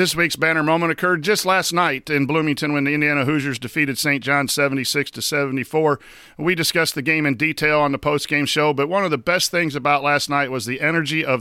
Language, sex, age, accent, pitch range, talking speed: English, male, 50-69, American, 135-160 Hz, 215 wpm